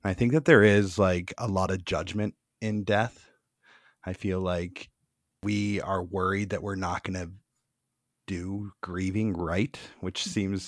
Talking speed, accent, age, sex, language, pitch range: 155 wpm, American, 30-49, male, English, 90-105 Hz